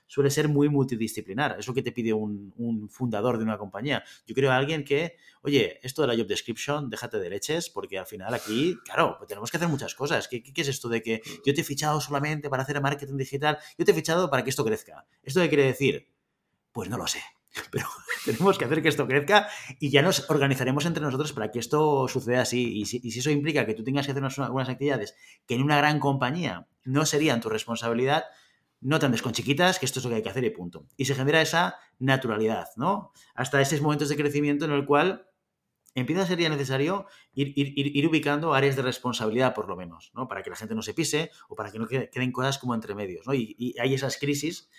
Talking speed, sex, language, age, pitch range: 240 wpm, male, Spanish, 30-49, 125-150 Hz